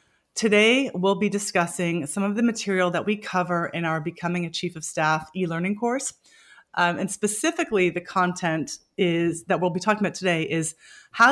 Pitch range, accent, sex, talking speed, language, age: 165-210 Hz, American, female, 180 wpm, English, 30-49